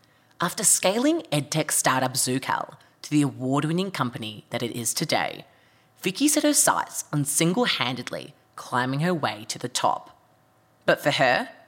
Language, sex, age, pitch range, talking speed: English, female, 20-39, 125-165 Hz, 145 wpm